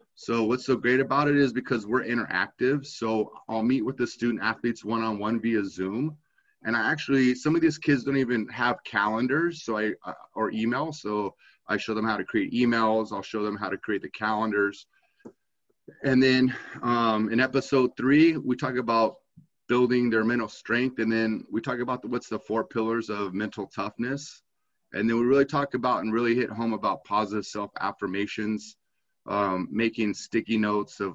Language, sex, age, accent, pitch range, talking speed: English, male, 30-49, American, 105-125 Hz, 185 wpm